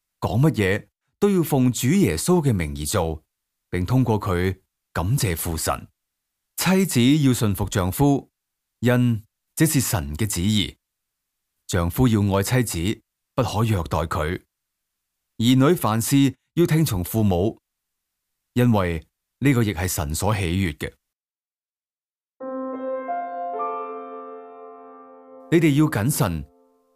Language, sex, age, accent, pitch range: Chinese, male, 30-49, native, 95-140 Hz